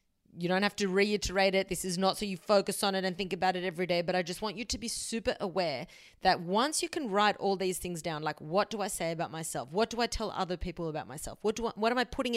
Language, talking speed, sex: English, 290 wpm, female